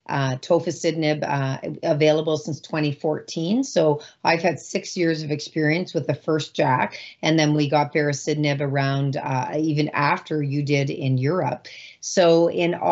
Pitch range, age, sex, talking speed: 150-175 Hz, 40-59, female, 150 wpm